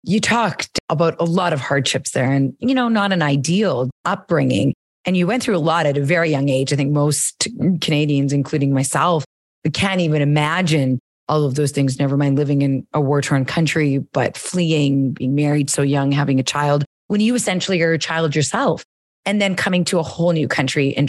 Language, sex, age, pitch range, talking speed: English, female, 30-49, 140-180 Hz, 200 wpm